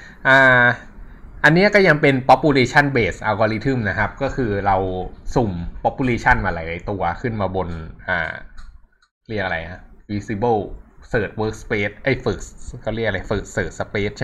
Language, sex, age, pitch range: Thai, male, 20-39, 95-130 Hz